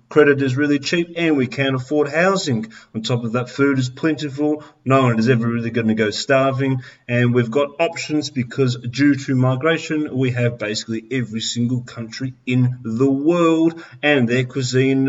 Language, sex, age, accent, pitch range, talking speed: English, male, 40-59, Australian, 120-145 Hz, 185 wpm